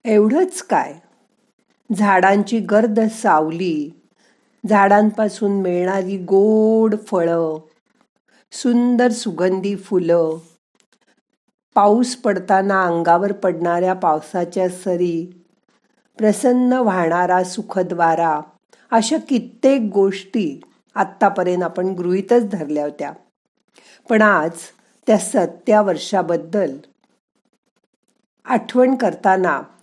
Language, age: Marathi, 50-69